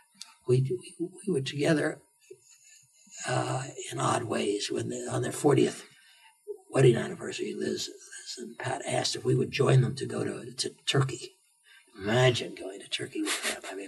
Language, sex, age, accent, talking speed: English, male, 60-79, American, 170 wpm